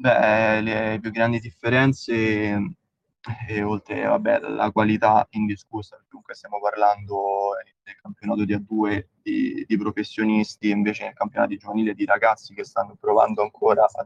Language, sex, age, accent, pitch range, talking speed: Italian, male, 20-39, native, 105-110 Hz, 140 wpm